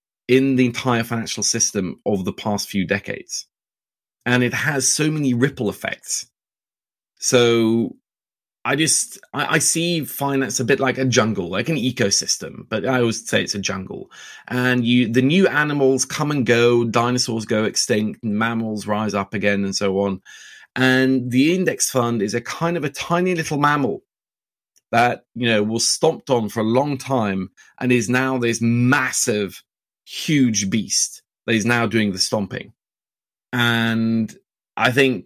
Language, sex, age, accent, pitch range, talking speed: English, male, 30-49, British, 105-130 Hz, 160 wpm